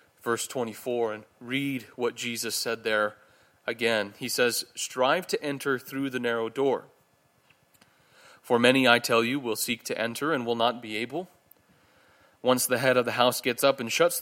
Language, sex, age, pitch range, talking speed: English, male, 30-49, 115-140 Hz, 175 wpm